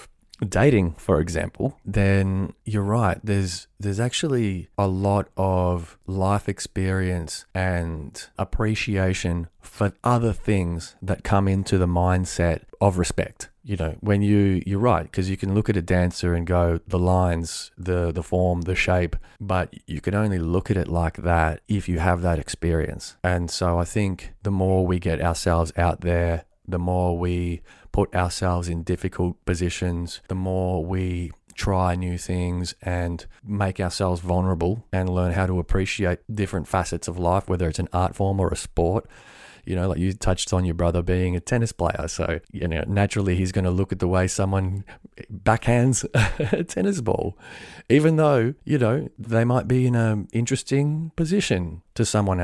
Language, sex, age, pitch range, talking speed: English, male, 20-39, 85-100 Hz, 170 wpm